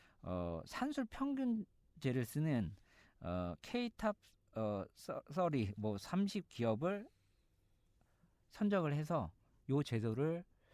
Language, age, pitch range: Korean, 40-59, 105-165 Hz